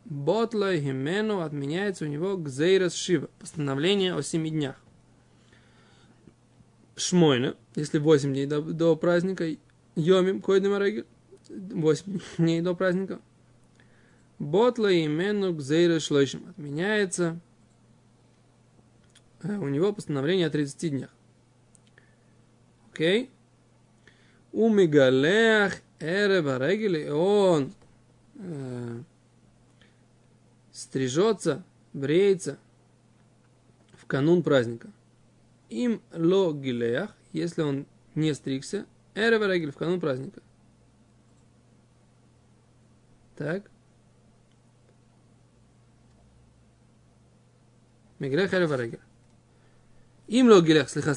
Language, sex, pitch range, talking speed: Russian, male, 120-185 Hz, 60 wpm